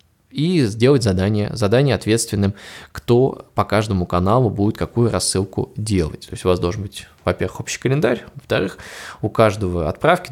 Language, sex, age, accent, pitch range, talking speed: Russian, male, 20-39, native, 95-115 Hz, 150 wpm